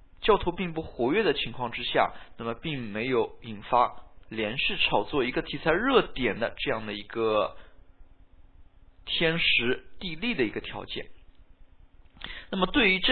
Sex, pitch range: male, 110-170 Hz